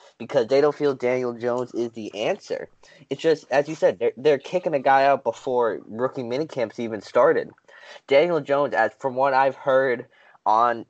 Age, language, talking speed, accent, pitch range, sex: 20-39, English, 180 wpm, American, 115-140 Hz, male